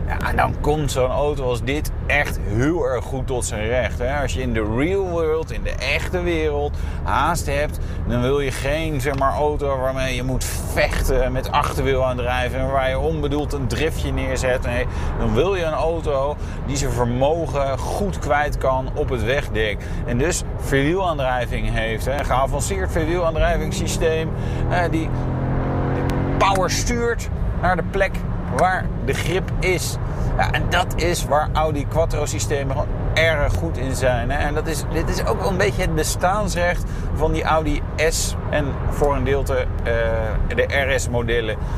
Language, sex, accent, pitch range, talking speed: Dutch, male, Dutch, 95-140 Hz, 175 wpm